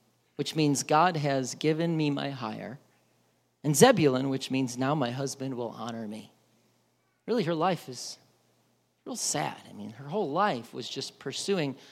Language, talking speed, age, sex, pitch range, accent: English, 160 wpm, 40-59, male, 125-180 Hz, American